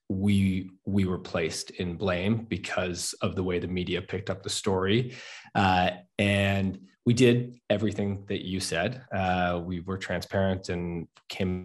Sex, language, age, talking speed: male, English, 20-39, 155 wpm